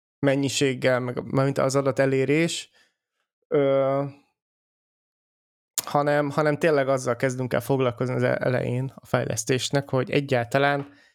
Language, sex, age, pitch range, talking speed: Hungarian, male, 20-39, 125-145 Hz, 110 wpm